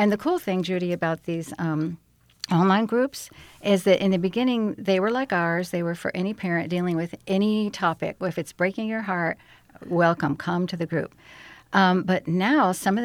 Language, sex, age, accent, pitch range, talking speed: English, female, 50-69, American, 170-200 Hz, 200 wpm